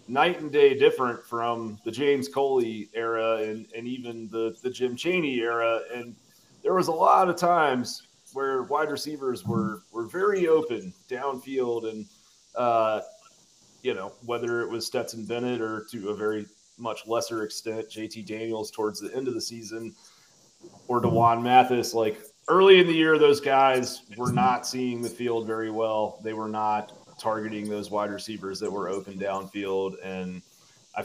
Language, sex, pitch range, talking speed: English, male, 110-130 Hz, 165 wpm